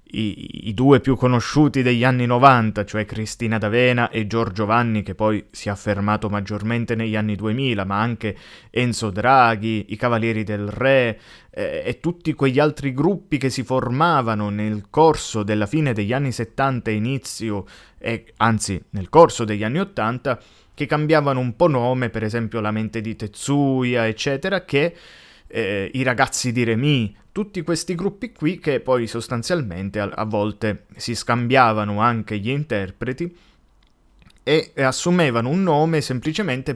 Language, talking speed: Italian, 155 wpm